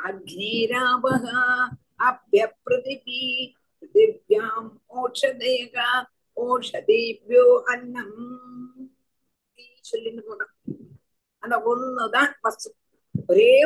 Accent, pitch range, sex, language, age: native, 245-335 Hz, female, Tamil, 50-69